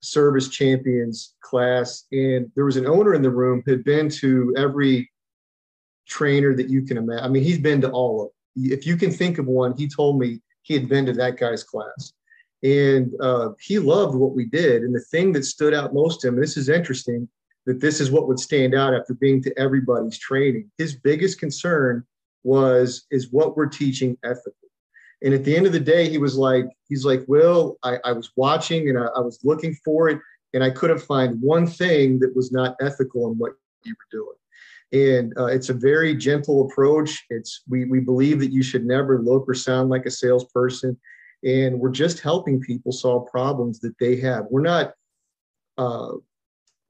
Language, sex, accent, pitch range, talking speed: English, male, American, 125-150 Hz, 205 wpm